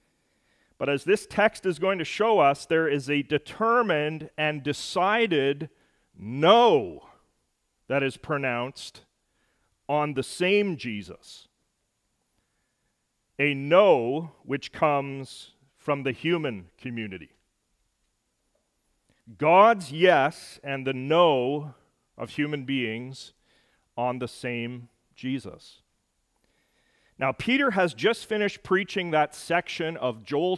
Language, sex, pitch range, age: English, male, 130-165 Hz, 40-59